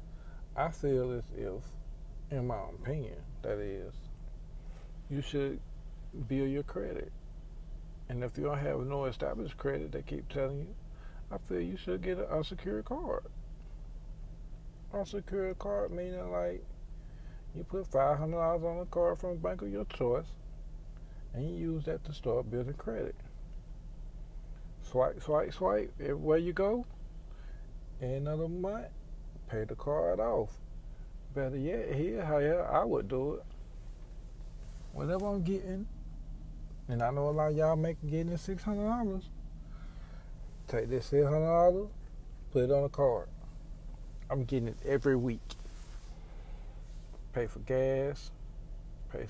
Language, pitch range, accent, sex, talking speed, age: English, 130-165 Hz, American, male, 135 wpm, 50-69